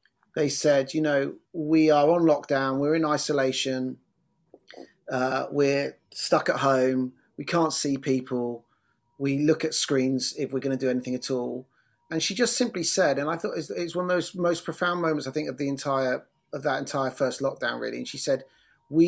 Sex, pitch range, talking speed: male, 135-170 Hz, 195 wpm